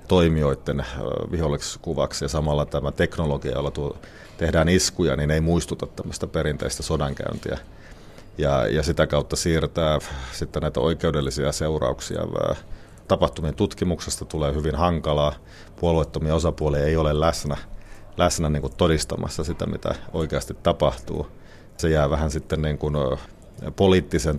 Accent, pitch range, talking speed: native, 75-85 Hz, 125 wpm